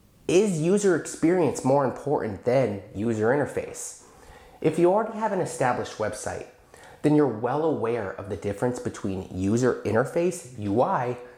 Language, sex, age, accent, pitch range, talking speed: English, male, 30-49, American, 110-165 Hz, 135 wpm